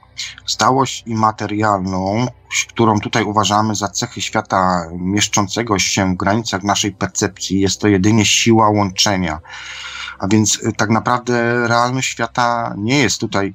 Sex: male